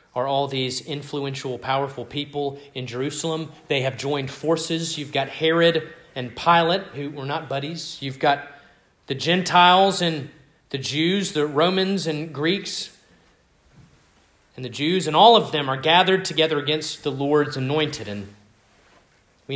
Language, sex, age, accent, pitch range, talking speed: English, male, 30-49, American, 120-160 Hz, 145 wpm